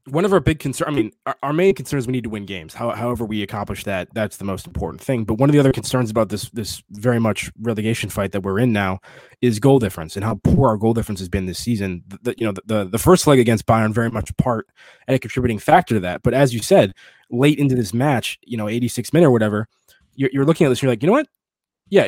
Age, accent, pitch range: 20-39, American, 105-135 Hz